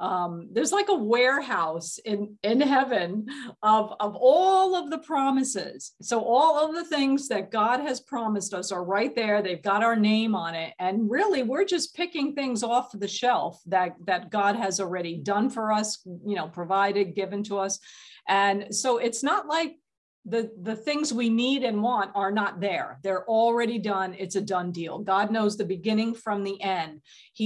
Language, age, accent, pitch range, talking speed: English, 50-69, American, 195-245 Hz, 190 wpm